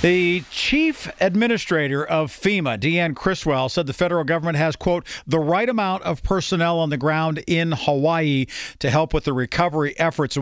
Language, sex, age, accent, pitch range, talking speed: English, male, 50-69, American, 135-165 Hz, 175 wpm